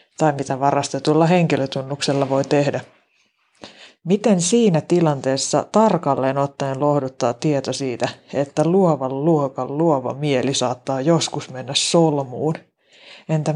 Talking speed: 105 wpm